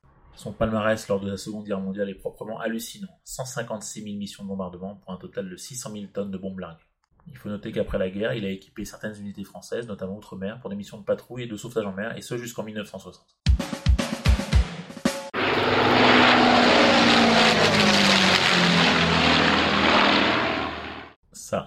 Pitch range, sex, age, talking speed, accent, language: 95-115 Hz, male, 30-49, 150 wpm, French, French